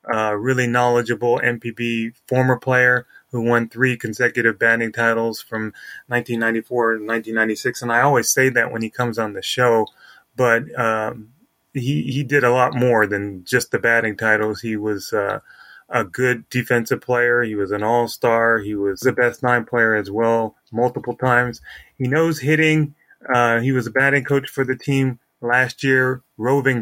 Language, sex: English, male